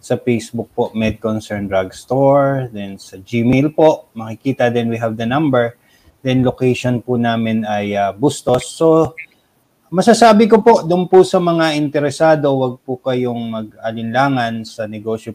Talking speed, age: 150 wpm, 20-39